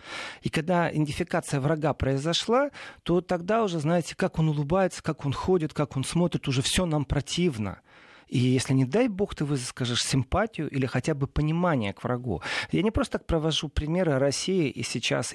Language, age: Russian, 40-59